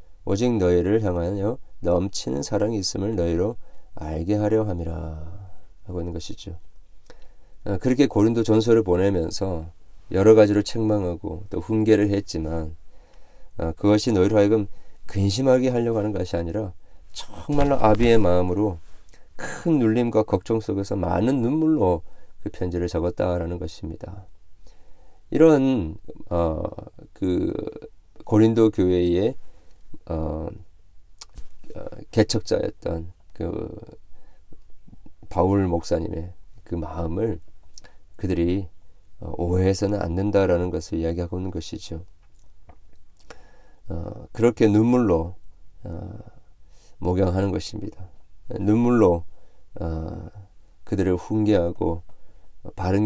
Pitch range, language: 80-105 Hz, Korean